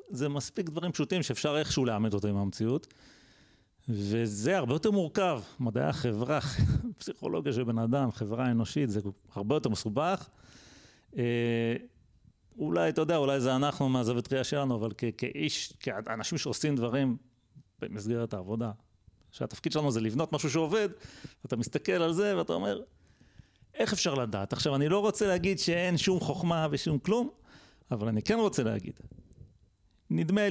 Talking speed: 150 wpm